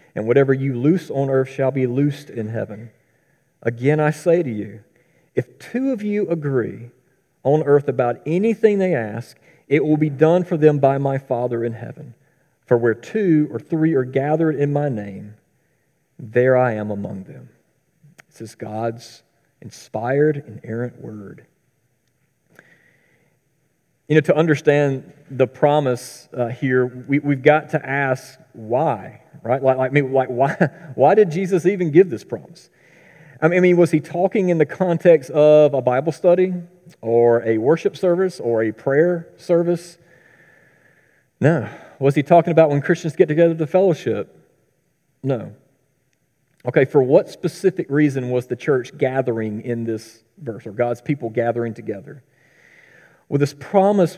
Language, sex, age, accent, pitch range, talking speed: English, male, 40-59, American, 125-165 Hz, 155 wpm